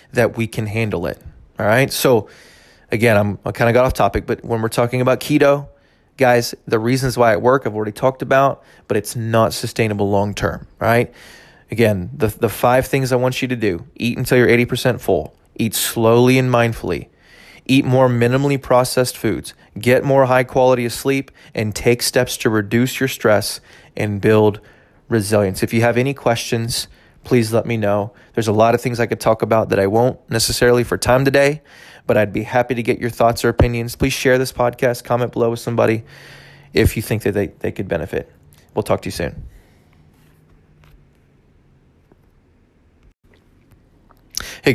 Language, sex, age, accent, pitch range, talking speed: English, male, 20-39, American, 110-125 Hz, 180 wpm